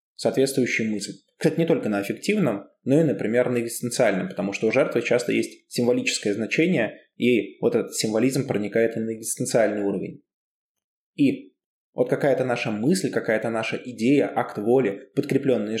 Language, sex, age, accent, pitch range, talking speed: Russian, male, 20-39, native, 115-170 Hz, 150 wpm